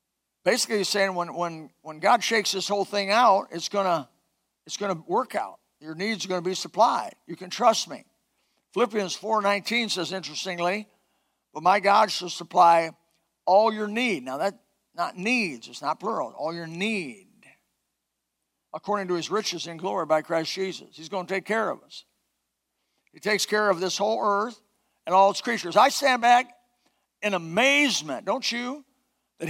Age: 50-69